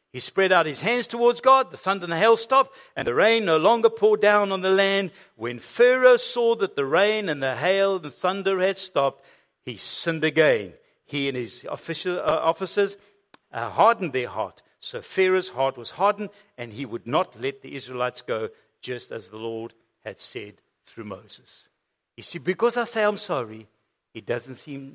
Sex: male